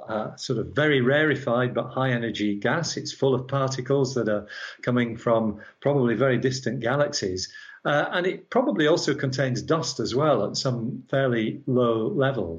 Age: 50-69